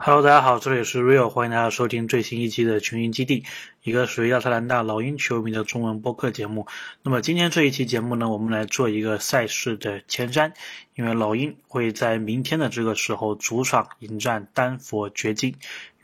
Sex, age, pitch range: male, 20-39, 110-130 Hz